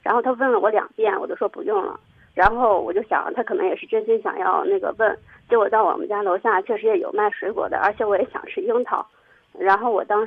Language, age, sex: Chinese, 20-39, female